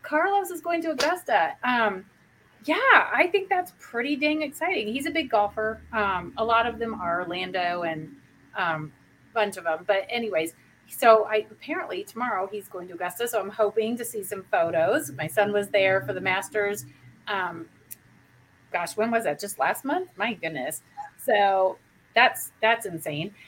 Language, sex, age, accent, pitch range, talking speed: English, female, 30-49, American, 190-265 Hz, 170 wpm